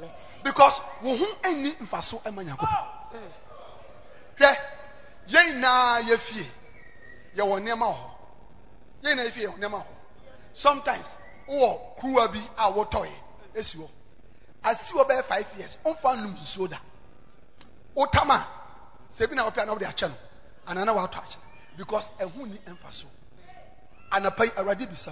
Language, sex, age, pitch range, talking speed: English, male, 40-59, 215-335 Hz, 55 wpm